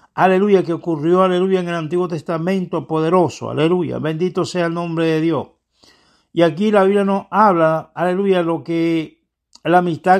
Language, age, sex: Spanish, 60-79, male